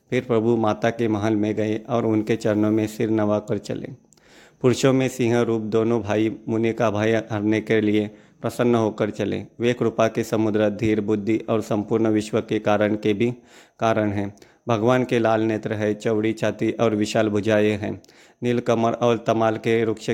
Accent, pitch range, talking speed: native, 105-115 Hz, 180 wpm